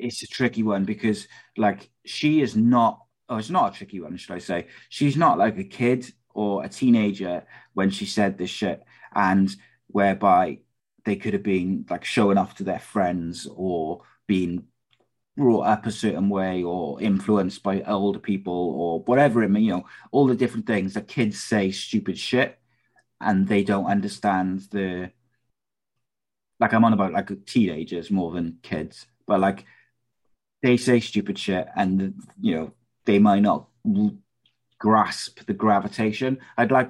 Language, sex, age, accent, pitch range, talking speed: English, male, 30-49, British, 95-115 Hz, 165 wpm